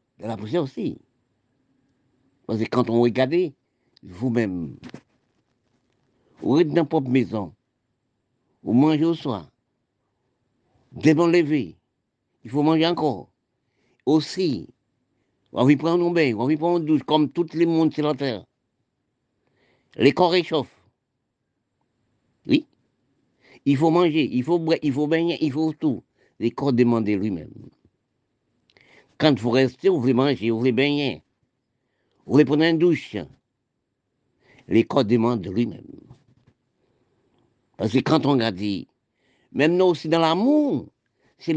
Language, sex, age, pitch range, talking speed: French, male, 60-79, 120-160 Hz, 135 wpm